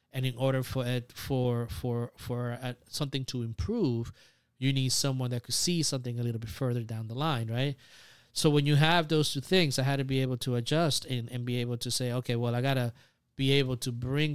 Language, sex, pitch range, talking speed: English, male, 120-135 Hz, 235 wpm